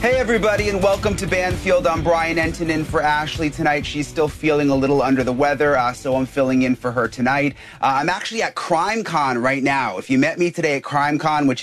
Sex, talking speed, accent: male, 225 wpm, American